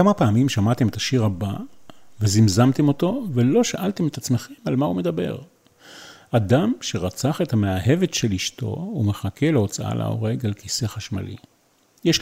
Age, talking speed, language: 40-59, 145 wpm, Hebrew